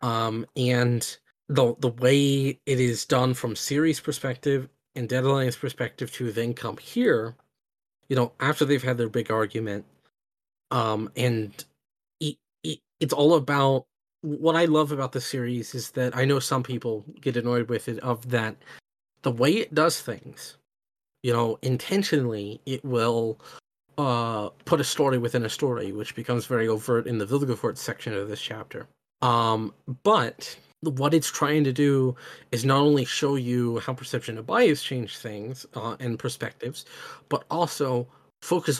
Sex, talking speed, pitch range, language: male, 160 wpm, 115-140 Hz, English